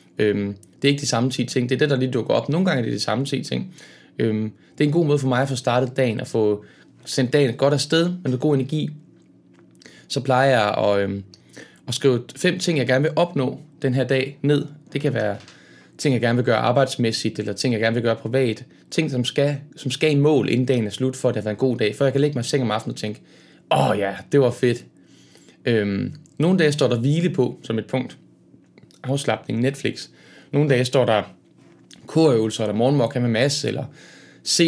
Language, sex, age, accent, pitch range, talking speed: Danish, male, 20-39, native, 120-150 Hz, 235 wpm